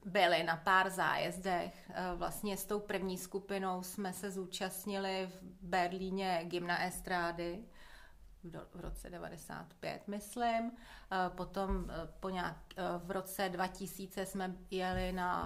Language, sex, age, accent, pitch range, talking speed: Czech, female, 30-49, native, 180-195 Hz, 115 wpm